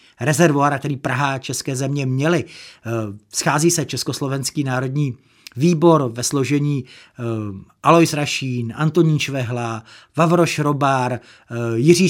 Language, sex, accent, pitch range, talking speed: Czech, male, native, 135-170 Hz, 100 wpm